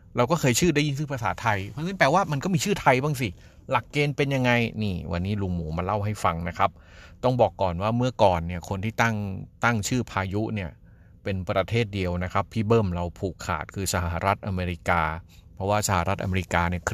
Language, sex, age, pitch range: Thai, male, 30-49, 95-125 Hz